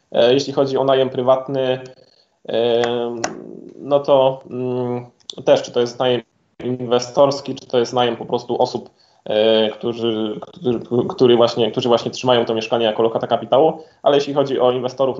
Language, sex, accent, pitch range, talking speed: Polish, male, native, 115-130 Hz, 135 wpm